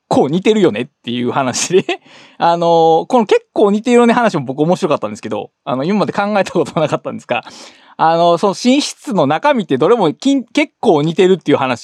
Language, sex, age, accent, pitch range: Japanese, male, 20-39, native, 165-255 Hz